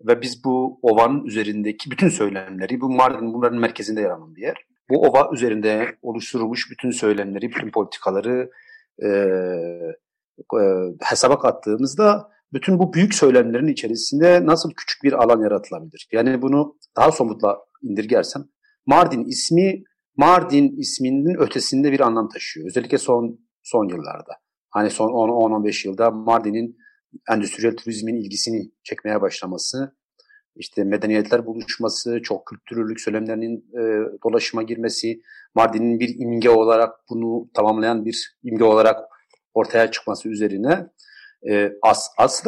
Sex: male